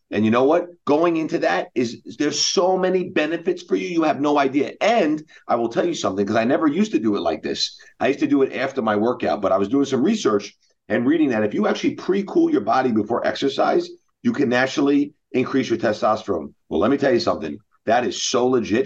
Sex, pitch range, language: male, 110-175 Hz, English